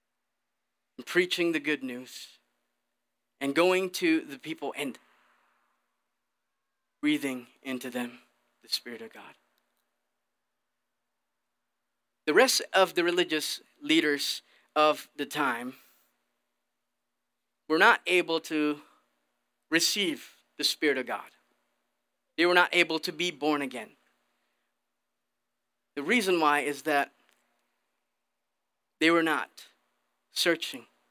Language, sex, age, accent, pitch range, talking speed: English, male, 30-49, American, 140-185 Hz, 100 wpm